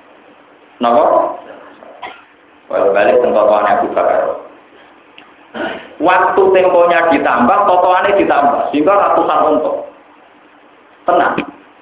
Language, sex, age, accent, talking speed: Indonesian, male, 50-69, native, 60 wpm